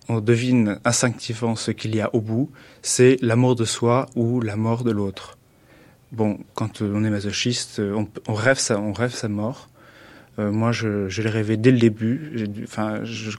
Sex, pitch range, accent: male, 105-120 Hz, French